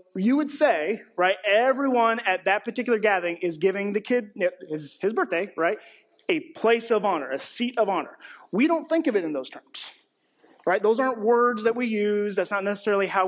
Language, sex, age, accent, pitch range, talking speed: English, male, 30-49, American, 175-230 Hz, 200 wpm